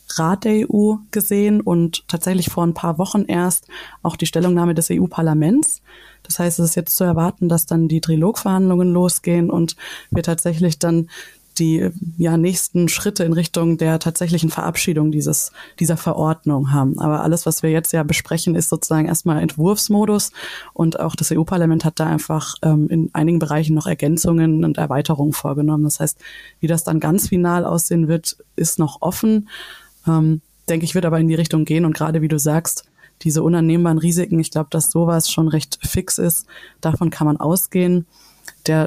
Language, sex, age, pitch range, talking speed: German, female, 20-39, 160-175 Hz, 175 wpm